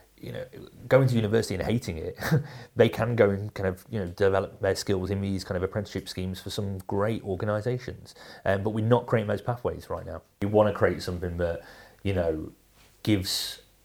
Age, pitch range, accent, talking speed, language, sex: 30-49, 90-100 Hz, British, 205 wpm, English, male